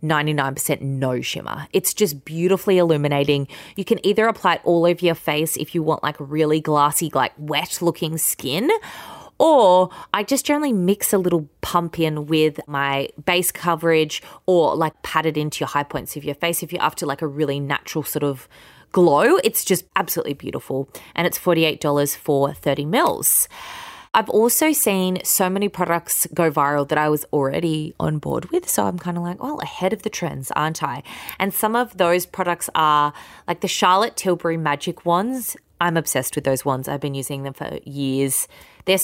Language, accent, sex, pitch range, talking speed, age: English, Australian, female, 150-200 Hz, 185 wpm, 20-39